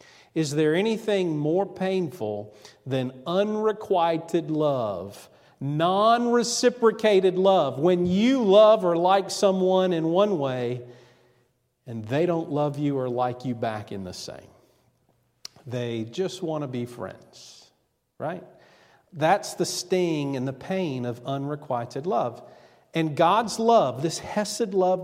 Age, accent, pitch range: 50-69, American, 130-185 Hz